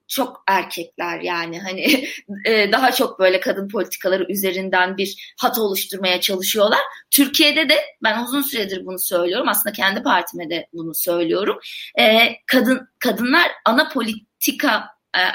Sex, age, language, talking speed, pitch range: female, 30-49, Turkish, 135 wpm, 200-295 Hz